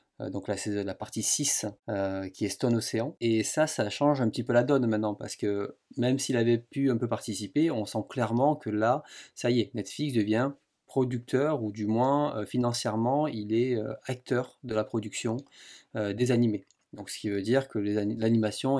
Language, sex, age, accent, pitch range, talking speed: French, male, 30-49, French, 110-135 Hz, 200 wpm